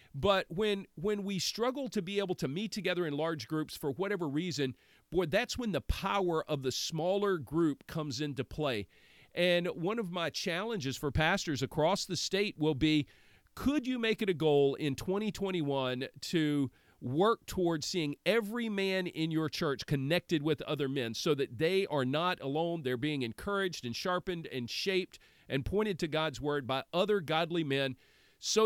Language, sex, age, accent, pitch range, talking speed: English, male, 40-59, American, 145-190 Hz, 180 wpm